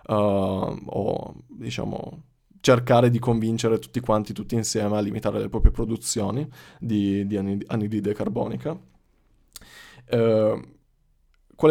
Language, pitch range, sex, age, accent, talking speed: Italian, 105-115 Hz, male, 20-39, native, 95 wpm